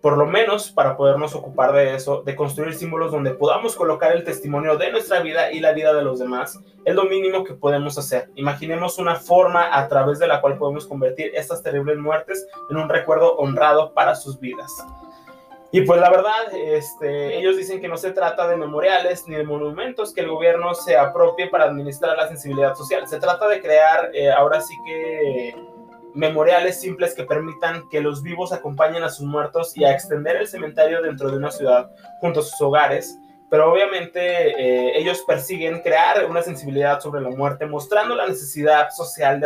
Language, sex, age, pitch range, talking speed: Spanish, male, 20-39, 140-180 Hz, 190 wpm